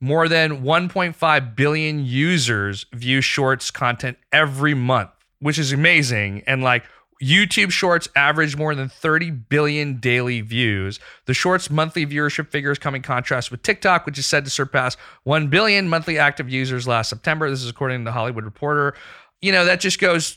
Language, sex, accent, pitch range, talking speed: English, male, American, 125-160 Hz, 170 wpm